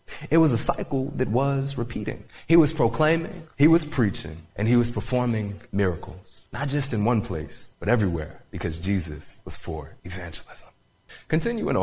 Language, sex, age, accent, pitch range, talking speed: English, male, 30-49, American, 90-150 Hz, 155 wpm